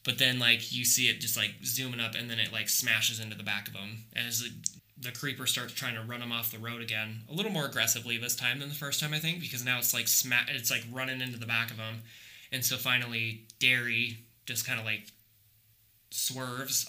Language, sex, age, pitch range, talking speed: English, male, 20-39, 110-125 Hz, 240 wpm